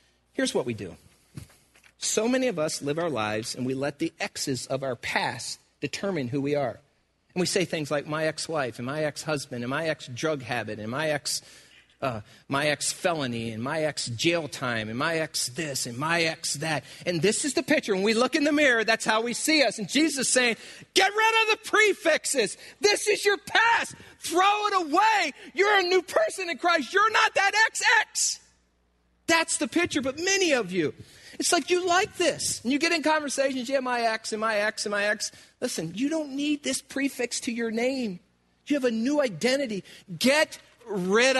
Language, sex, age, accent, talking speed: English, male, 40-59, American, 200 wpm